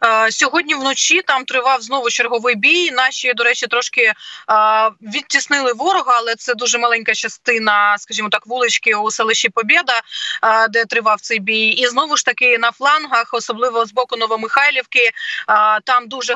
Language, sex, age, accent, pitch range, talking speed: Ukrainian, female, 20-39, native, 230-270 Hz, 145 wpm